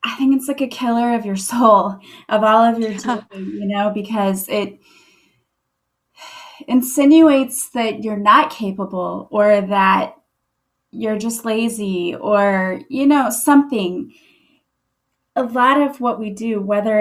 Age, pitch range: 20-39, 200-240 Hz